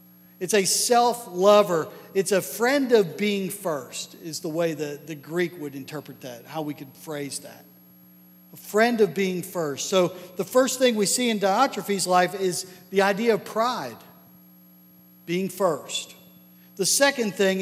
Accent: American